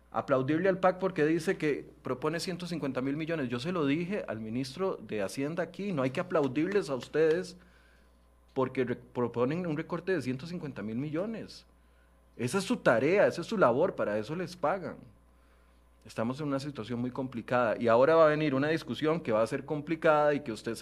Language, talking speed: Spanish, 190 wpm